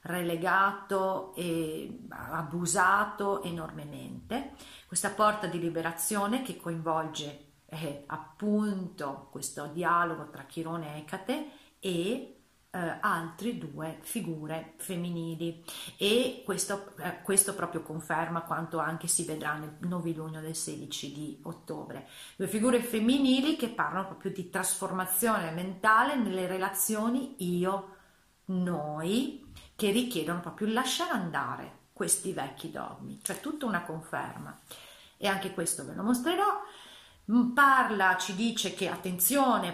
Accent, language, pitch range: native, Italian, 165-210 Hz